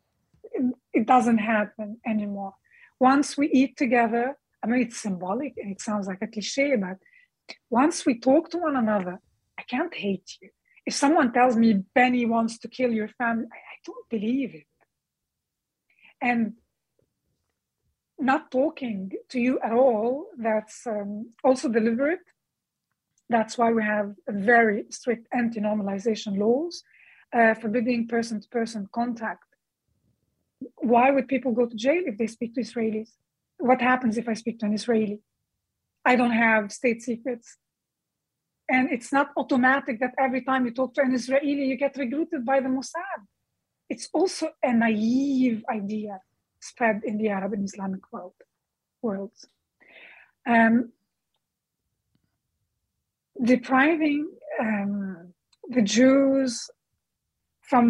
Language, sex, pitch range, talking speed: English, female, 220-265 Hz, 130 wpm